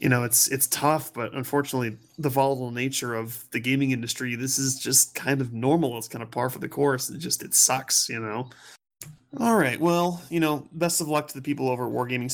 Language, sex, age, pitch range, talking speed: English, male, 20-39, 115-145 Hz, 230 wpm